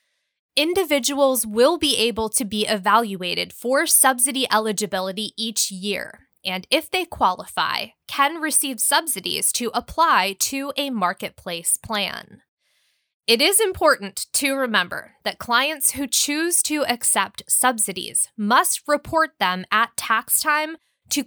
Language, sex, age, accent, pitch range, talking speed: English, female, 20-39, American, 210-285 Hz, 125 wpm